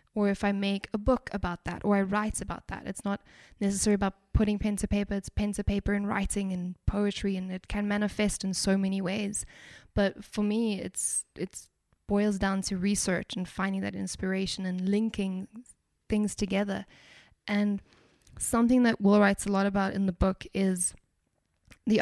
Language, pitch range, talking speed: English, 190-210 Hz, 185 wpm